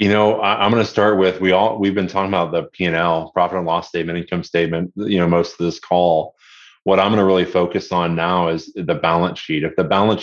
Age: 30-49